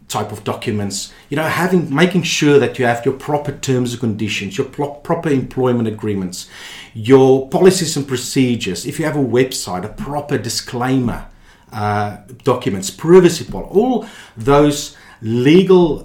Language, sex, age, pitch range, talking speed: English, male, 40-59, 105-135 Hz, 150 wpm